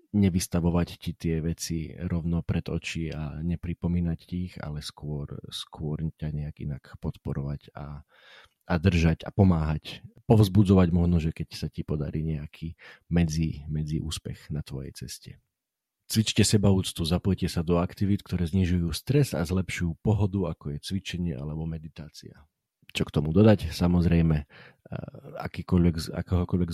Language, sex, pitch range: Slovak, male, 80-95 Hz